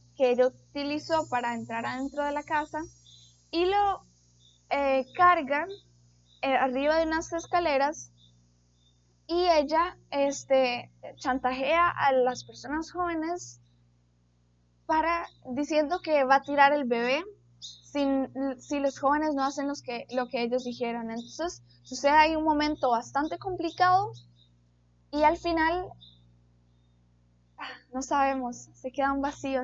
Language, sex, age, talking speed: Spanish, female, 10-29, 125 wpm